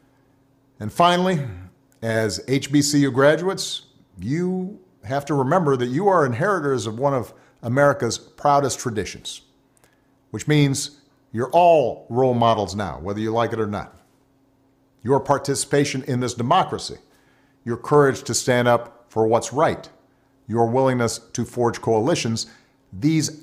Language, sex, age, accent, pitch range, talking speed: English, male, 50-69, American, 115-145 Hz, 130 wpm